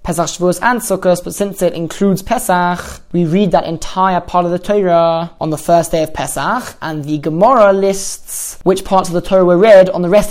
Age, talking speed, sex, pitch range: 20-39, 215 wpm, male, 165-190 Hz